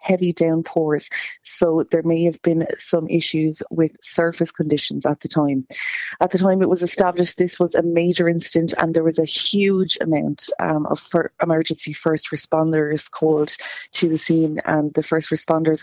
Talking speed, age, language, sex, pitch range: 175 wpm, 30-49, English, female, 155-170 Hz